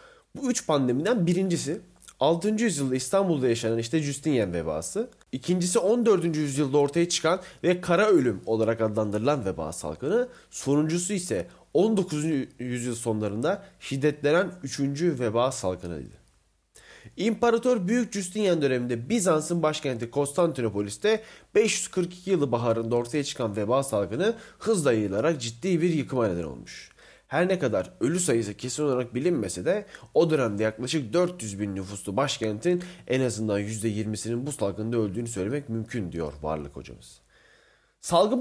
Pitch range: 110-175 Hz